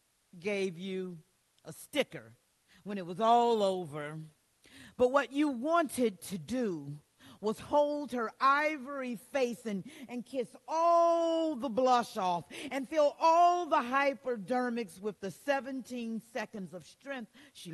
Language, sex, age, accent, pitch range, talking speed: English, female, 40-59, American, 185-260 Hz, 130 wpm